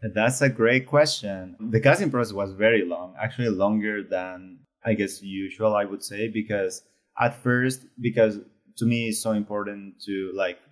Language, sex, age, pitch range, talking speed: English, male, 20-39, 95-115 Hz, 170 wpm